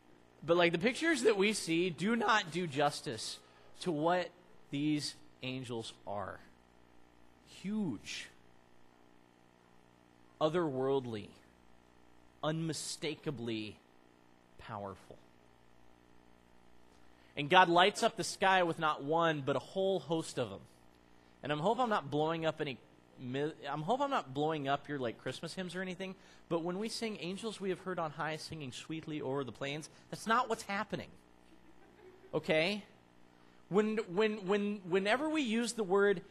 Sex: male